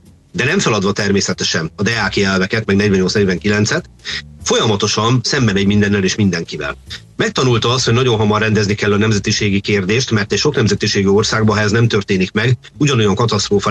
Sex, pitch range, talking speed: male, 100-120 Hz, 160 wpm